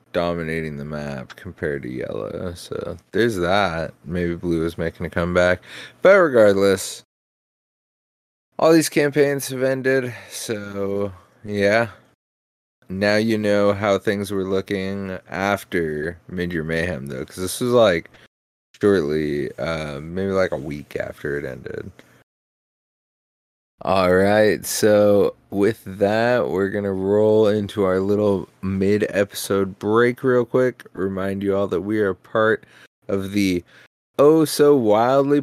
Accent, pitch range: American, 90-115 Hz